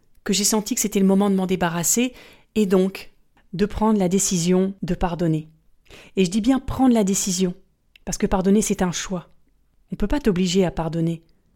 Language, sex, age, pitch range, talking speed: French, female, 30-49, 180-215 Hz, 195 wpm